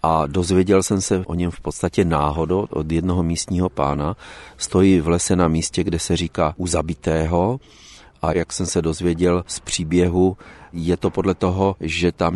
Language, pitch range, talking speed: Czech, 80-95 Hz, 175 wpm